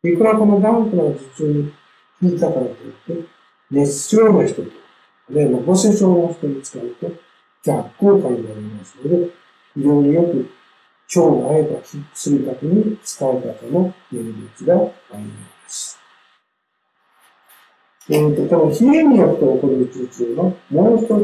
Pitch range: 135-205 Hz